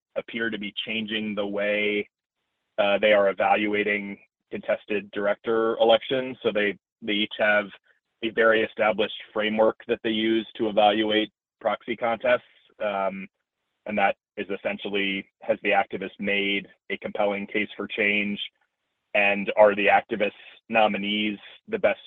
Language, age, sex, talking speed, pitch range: English, 30-49, male, 135 wpm, 100-110 Hz